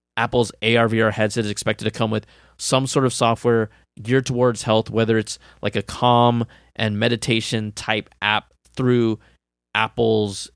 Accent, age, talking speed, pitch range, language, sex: American, 20-39, 155 wpm, 105-130 Hz, English, male